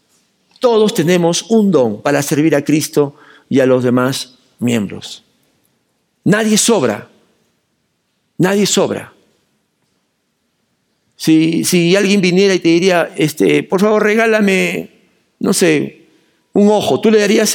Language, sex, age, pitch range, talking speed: Spanish, male, 50-69, 180-235 Hz, 115 wpm